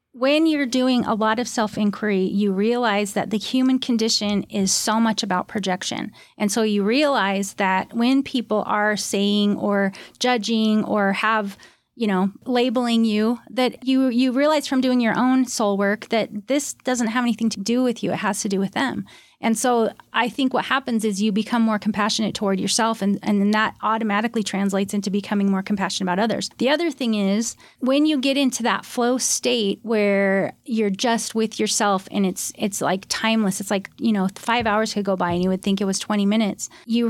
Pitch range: 200-235 Hz